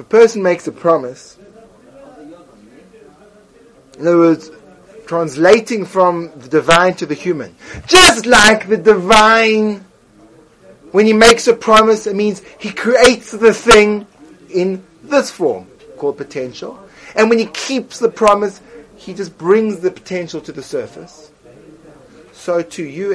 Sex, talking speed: male, 135 wpm